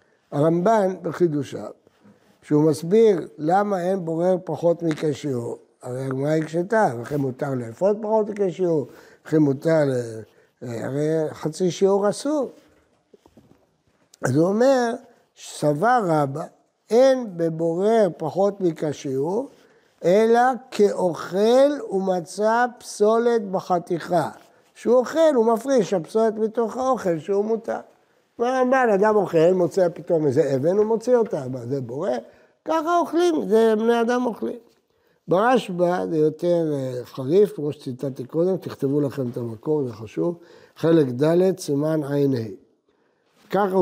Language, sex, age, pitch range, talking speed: Hebrew, male, 60-79, 155-225 Hz, 120 wpm